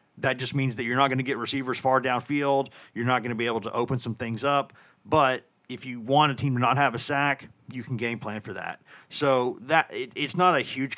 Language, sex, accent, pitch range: English, male, American, 110-130 Hz